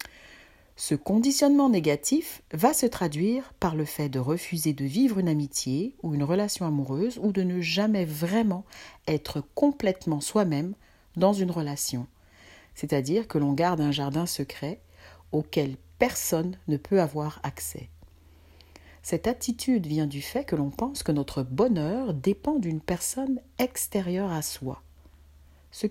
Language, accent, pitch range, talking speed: French, French, 145-220 Hz, 140 wpm